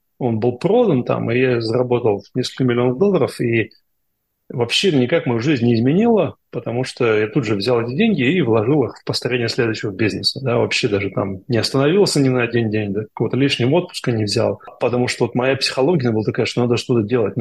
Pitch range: 115-140 Hz